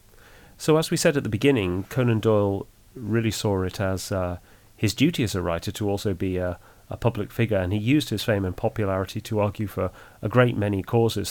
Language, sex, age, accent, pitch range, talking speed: English, male, 30-49, British, 95-110 Hz, 210 wpm